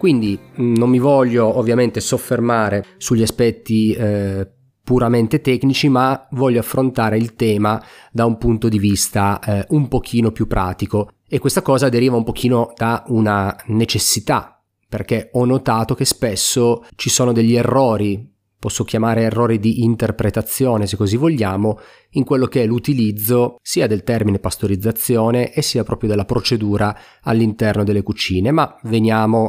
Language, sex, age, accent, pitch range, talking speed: Italian, male, 30-49, native, 105-125 Hz, 145 wpm